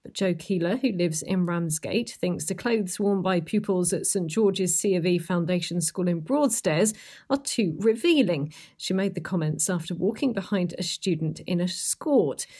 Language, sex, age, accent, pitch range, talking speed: English, female, 40-59, British, 170-205 Hz, 180 wpm